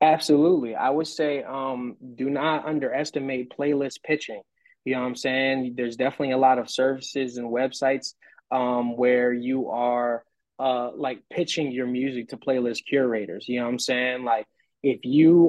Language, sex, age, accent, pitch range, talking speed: English, male, 20-39, American, 120-135 Hz, 165 wpm